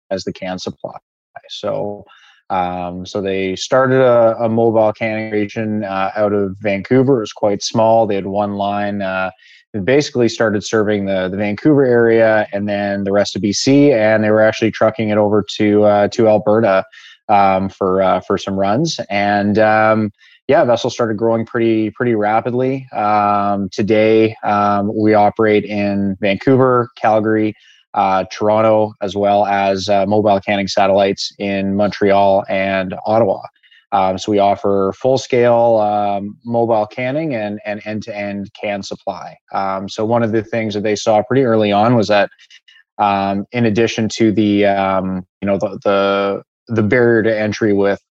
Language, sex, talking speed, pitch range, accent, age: English, male, 165 wpm, 100-110 Hz, American, 20-39